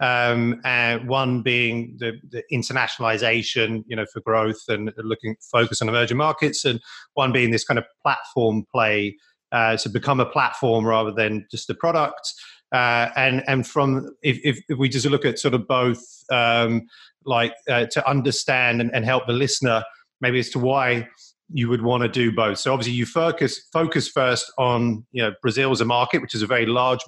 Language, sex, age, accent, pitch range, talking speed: English, male, 30-49, British, 115-135 Hz, 190 wpm